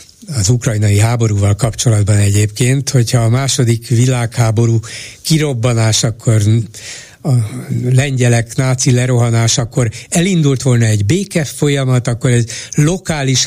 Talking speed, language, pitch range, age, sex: 105 wpm, Hungarian, 115-135 Hz, 60-79, male